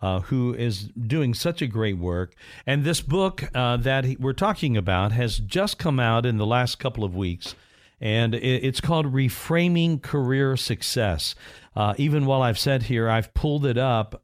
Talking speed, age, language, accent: 175 wpm, 50-69, English, American